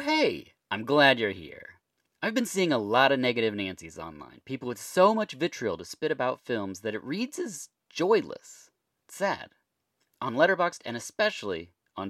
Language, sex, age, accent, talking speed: English, male, 30-49, American, 170 wpm